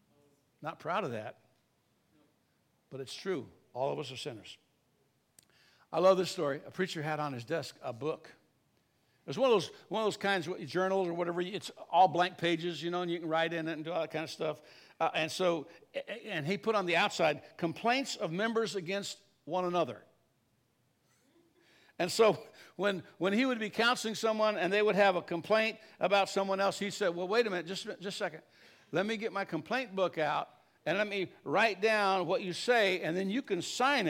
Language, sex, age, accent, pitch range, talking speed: English, male, 60-79, American, 170-215 Hz, 205 wpm